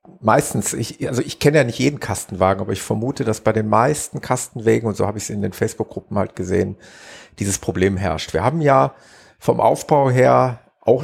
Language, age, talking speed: German, 50-69, 200 wpm